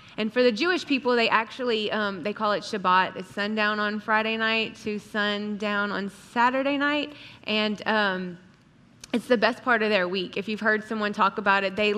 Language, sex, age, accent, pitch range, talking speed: English, female, 20-39, American, 195-220 Hz, 195 wpm